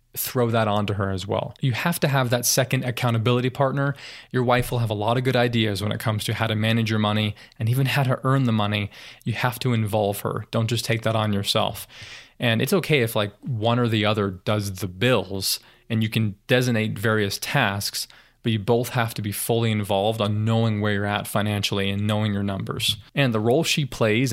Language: English